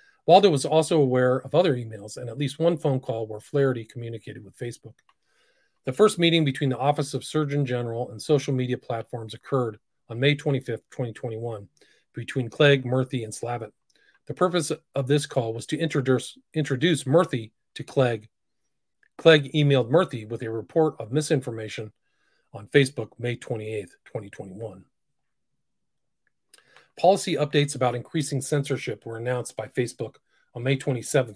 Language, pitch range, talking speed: English, 115-150 Hz, 150 wpm